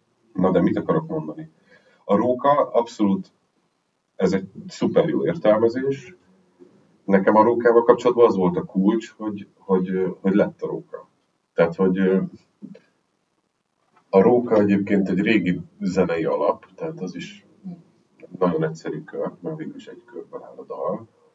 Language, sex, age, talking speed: Hungarian, male, 40-59, 140 wpm